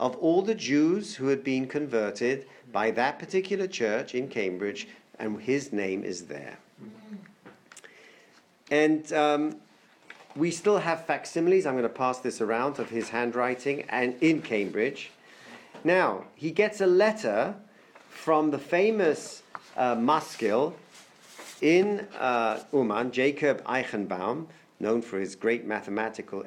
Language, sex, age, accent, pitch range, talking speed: English, male, 50-69, British, 125-185 Hz, 125 wpm